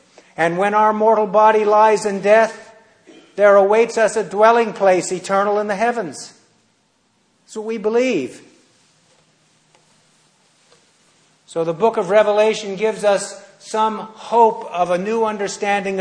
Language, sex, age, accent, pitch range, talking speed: English, male, 50-69, American, 180-215 Hz, 130 wpm